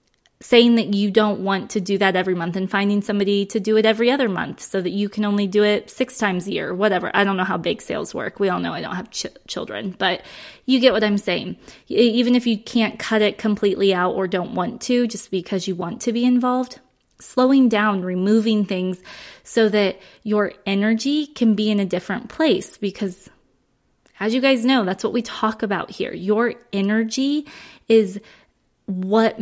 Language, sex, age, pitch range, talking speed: English, female, 20-39, 190-230 Hz, 200 wpm